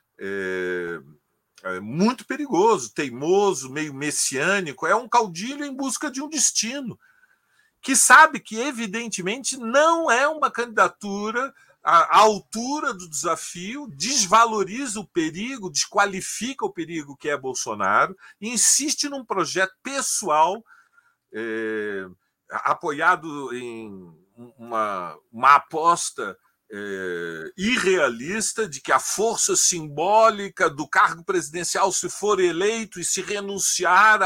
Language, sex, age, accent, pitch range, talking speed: Portuguese, male, 50-69, Brazilian, 160-225 Hz, 100 wpm